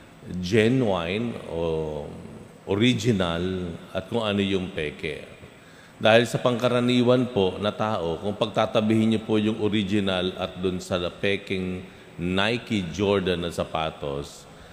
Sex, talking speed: male, 115 wpm